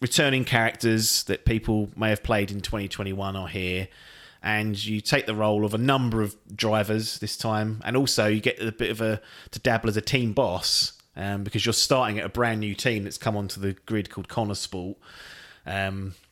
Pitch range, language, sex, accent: 100-120 Hz, English, male, British